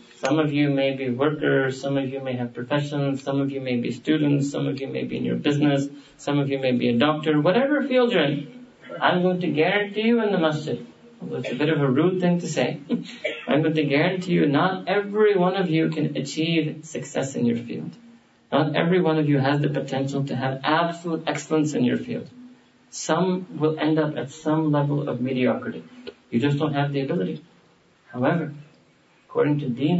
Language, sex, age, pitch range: English, male, 40-59, 135-165 Hz